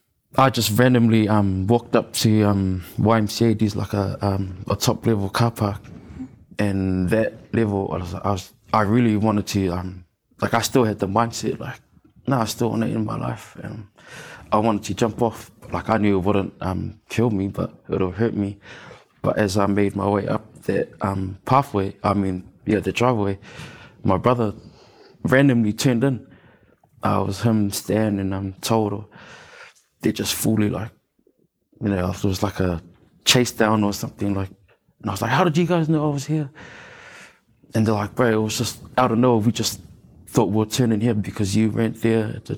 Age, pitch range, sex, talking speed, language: 20-39, 100-115 Hz, male, 200 wpm, English